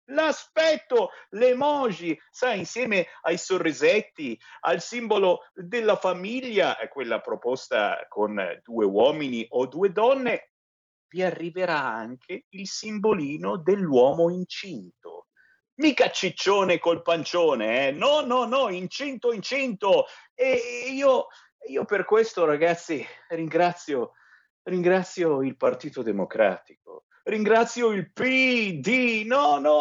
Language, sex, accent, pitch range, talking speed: Italian, male, native, 175-290 Hz, 105 wpm